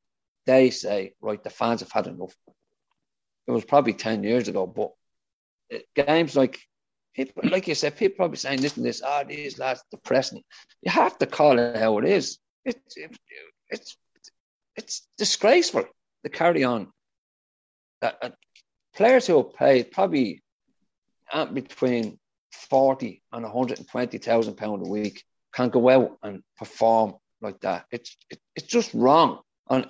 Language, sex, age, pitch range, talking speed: English, male, 40-59, 115-145 Hz, 160 wpm